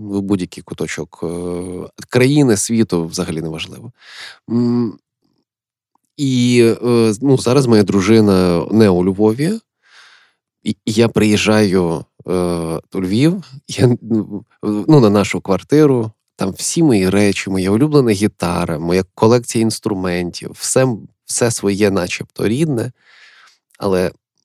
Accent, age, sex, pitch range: native, 20-39, male, 95-120 Hz